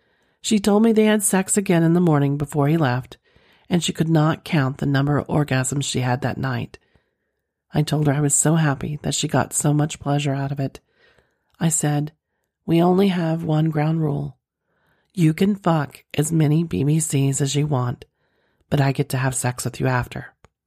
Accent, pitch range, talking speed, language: American, 140-170 Hz, 195 wpm, English